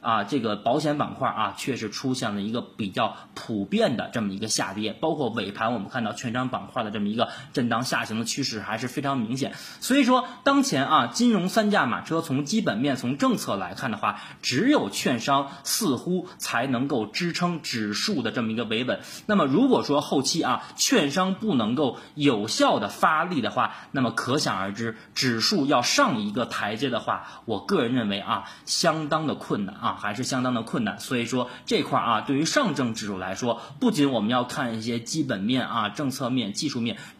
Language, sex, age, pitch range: Chinese, male, 20-39, 115-175 Hz